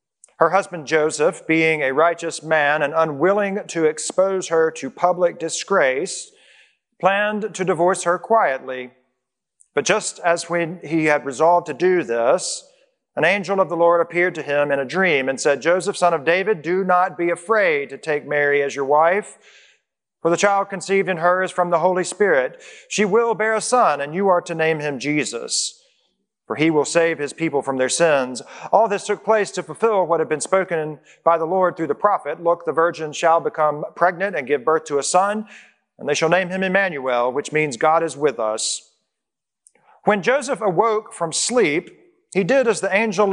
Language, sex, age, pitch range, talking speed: English, male, 40-59, 150-195 Hz, 195 wpm